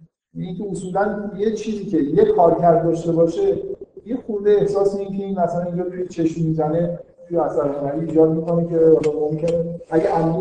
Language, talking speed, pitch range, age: Persian, 145 wpm, 145-175 Hz, 50-69